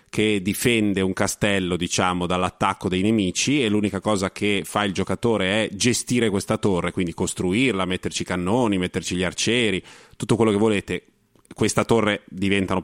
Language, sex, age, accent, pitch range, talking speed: Italian, male, 30-49, native, 95-120 Hz, 155 wpm